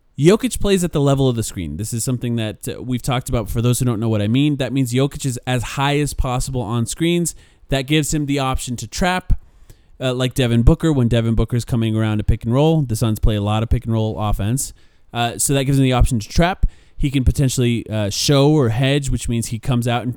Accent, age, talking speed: American, 20-39, 255 wpm